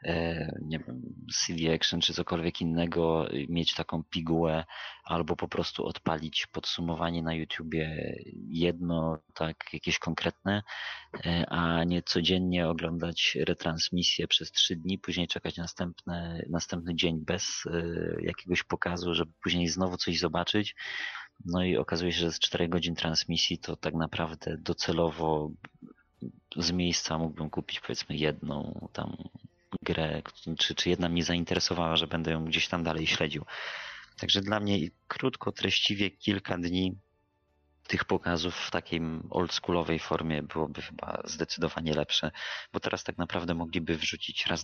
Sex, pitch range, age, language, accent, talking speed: male, 80-90 Hz, 30-49, Polish, native, 130 wpm